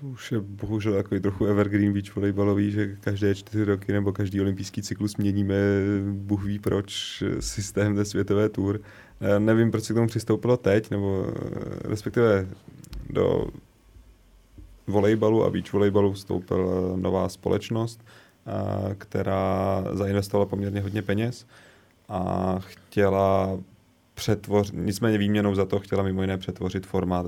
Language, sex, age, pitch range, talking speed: Czech, male, 30-49, 95-105 Hz, 130 wpm